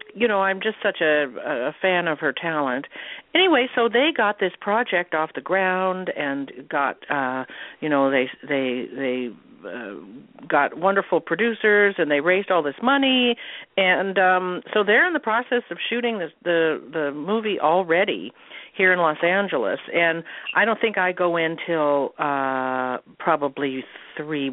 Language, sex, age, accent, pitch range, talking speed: English, female, 50-69, American, 130-185 Hz, 165 wpm